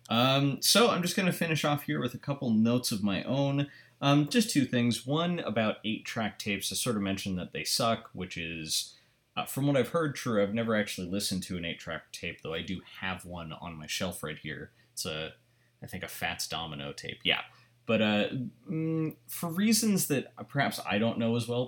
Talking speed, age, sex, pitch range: 215 wpm, 20-39, male, 95-125 Hz